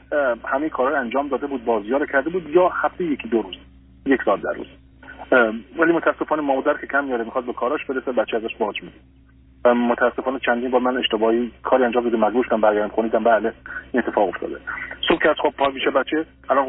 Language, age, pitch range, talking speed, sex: Persian, 40-59, 115-155 Hz, 190 wpm, male